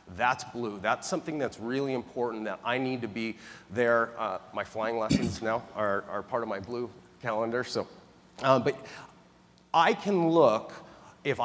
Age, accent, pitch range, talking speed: 30-49, American, 120-155 Hz, 170 wpm